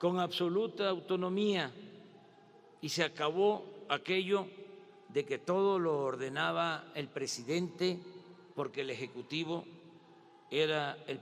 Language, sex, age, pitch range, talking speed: Spanish, male, 50-69, 140-205 Hz, 100 wpm